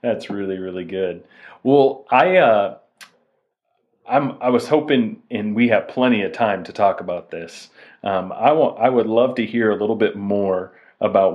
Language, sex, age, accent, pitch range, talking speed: English, male, 40-59, American, 95-125 Hz, 180 wpm